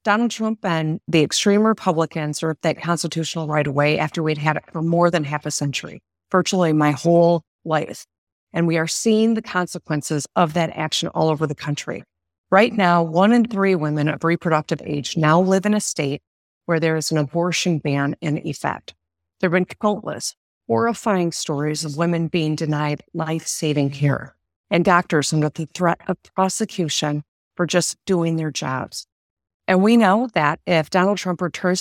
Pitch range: 150-185 Hz